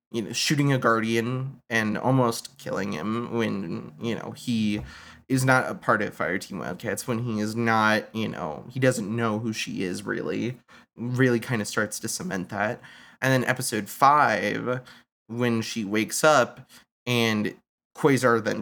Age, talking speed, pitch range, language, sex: 20-39, 165 wpm, 110-130 Hz, English, male